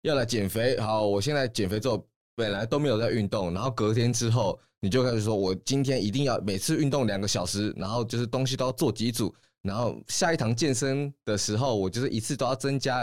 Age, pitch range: 20-39, 95-125 Hz